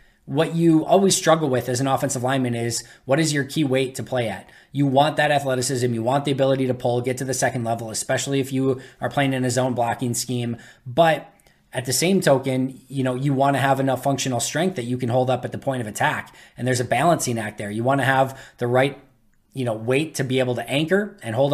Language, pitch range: English, 125-140 Hz